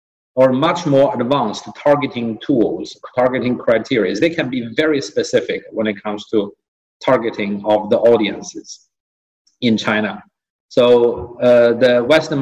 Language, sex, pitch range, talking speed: English, male, 105-125 Hz, 130 wpm